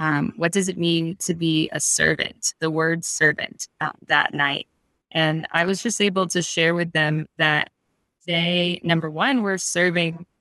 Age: 20-39